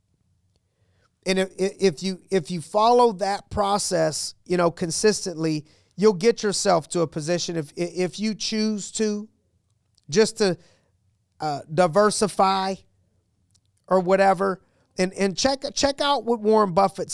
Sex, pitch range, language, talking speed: male, 145-185 Hz, English, 130 wpm